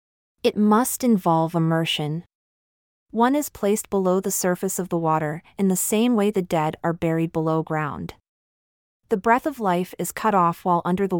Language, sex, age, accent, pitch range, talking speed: English, female, 30-49, American, 170-205 Hz, 175 wpm